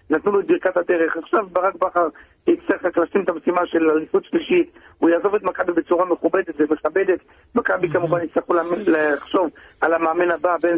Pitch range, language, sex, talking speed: 170-210 Hz, Hebrew, male, 165 wpm